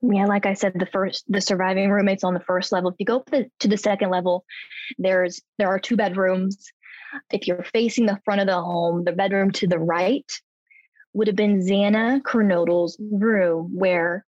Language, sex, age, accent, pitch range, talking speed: English, female, 20-39, American, 185-230 Hz, 195 wpm